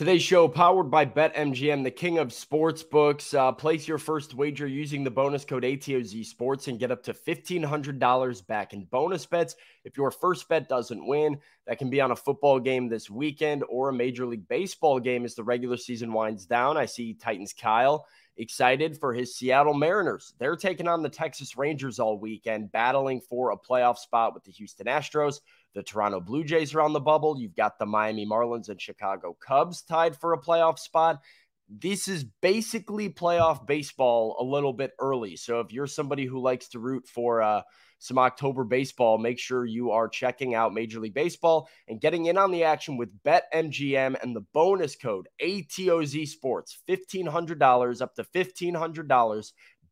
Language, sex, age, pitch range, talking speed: English, male, 20-39, 120-160 Hz, 185 wpm